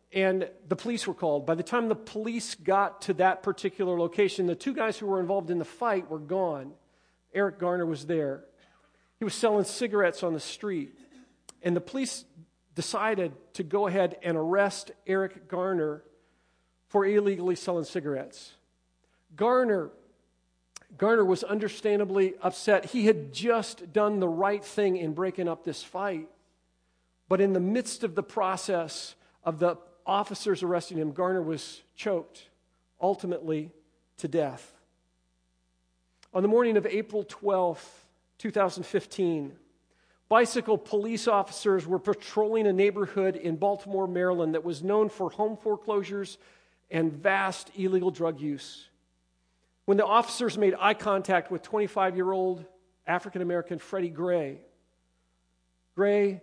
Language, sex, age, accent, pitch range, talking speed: English, male, 50-69, American, 160-200 Hz, 135 wpm